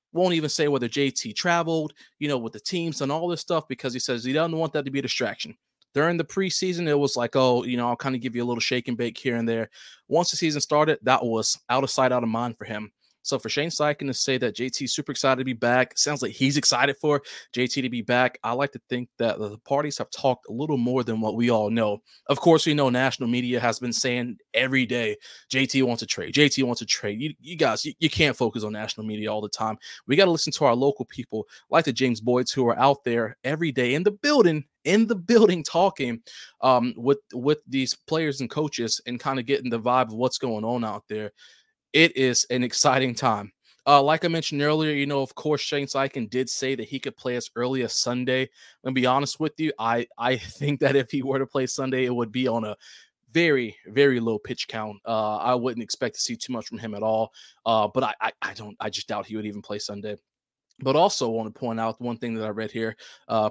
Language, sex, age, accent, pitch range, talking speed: English, male, 20-39, American, 115-145 Hz, 255 wpm